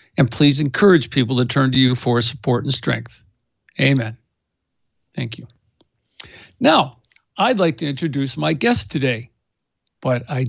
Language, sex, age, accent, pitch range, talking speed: English, male, 60-79, American, 120-160 Hz, 145 wpm